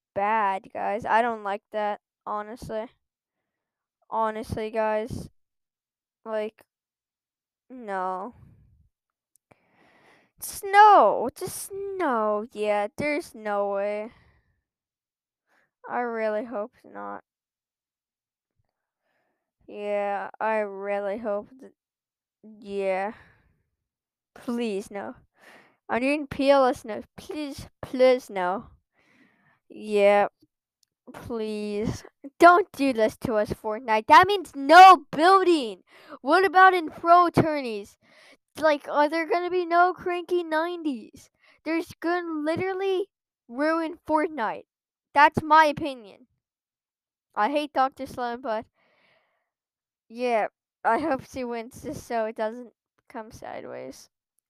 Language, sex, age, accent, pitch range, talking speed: English, female, 10-29, American, 215-325 Hz, 95 wpm